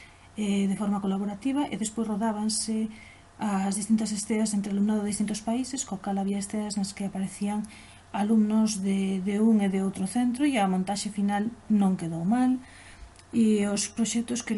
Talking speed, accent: 185 wpm, Spanish